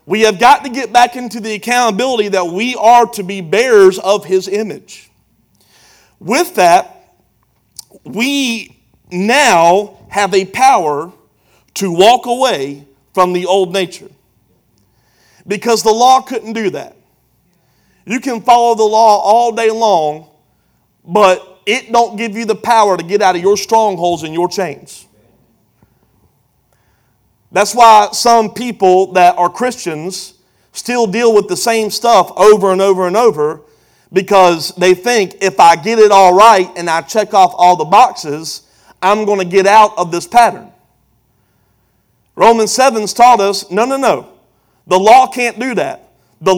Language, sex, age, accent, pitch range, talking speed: English, male, 40-59, American, 175-230 Hz, 150 wpm